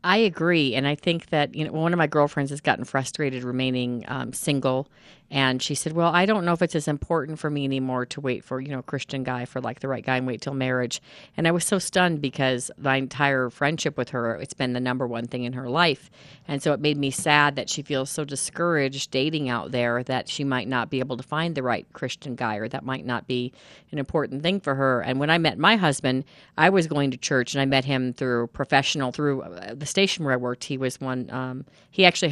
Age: 40-59